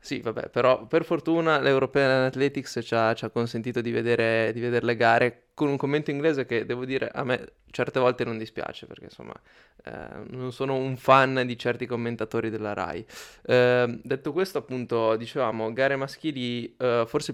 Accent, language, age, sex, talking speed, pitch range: native, Italian, 20-39, male, 175 wpm, 110-125 Hz